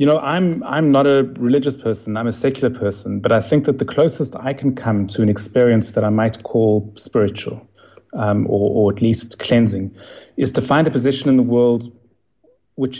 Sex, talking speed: male, 205 wpm